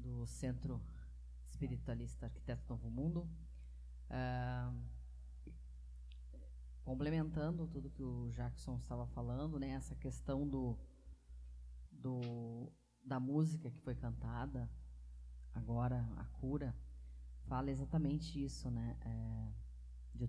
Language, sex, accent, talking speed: Portuguese, female, Brazilian, 100 wpm